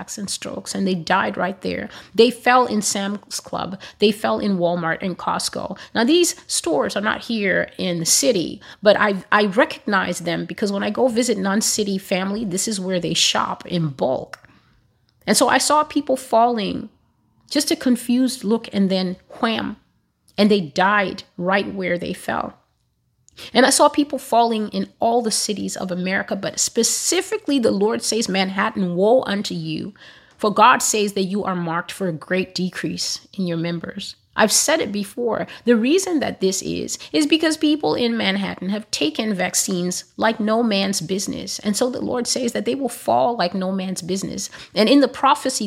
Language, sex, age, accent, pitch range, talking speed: English, female, 30-49, American, 185-240 Hz, 180 wpm